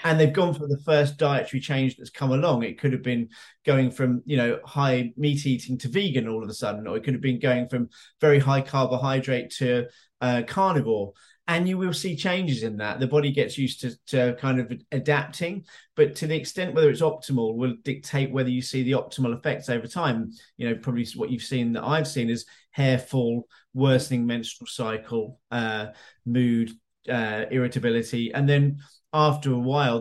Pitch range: 125-150 Hz